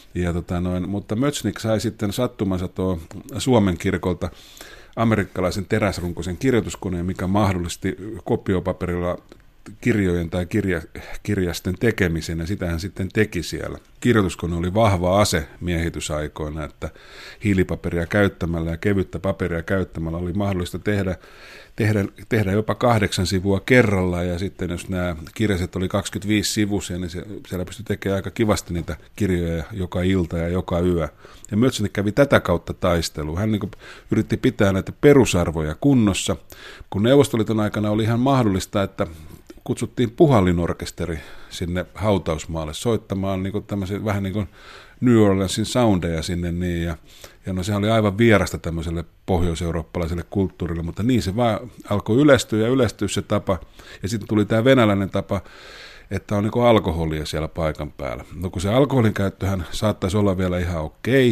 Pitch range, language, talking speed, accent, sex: 85-105 Hz, Finnish, 145 wpm, native, male